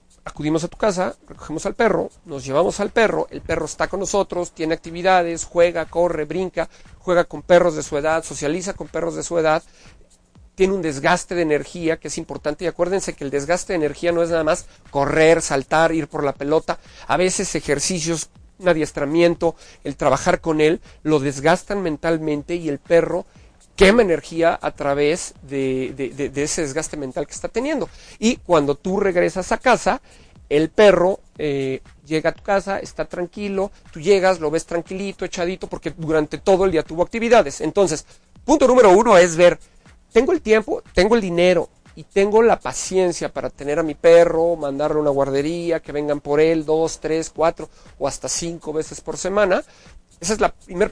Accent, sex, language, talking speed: Mexican, male, Spanish, 185 wpm